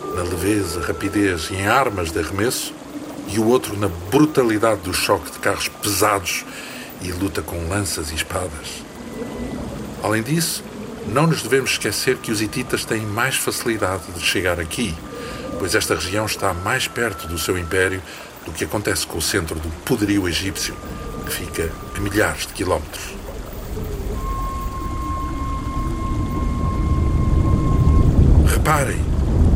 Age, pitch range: 60-79, 85-105 Hz